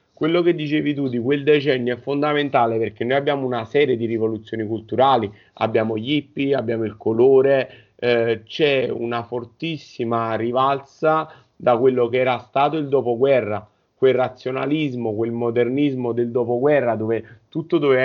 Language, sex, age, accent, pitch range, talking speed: Italian, male, 30-49, native, 115-140 Hz, 145 wpm